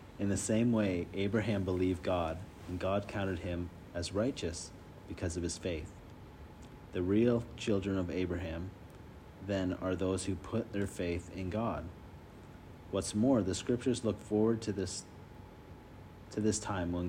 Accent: American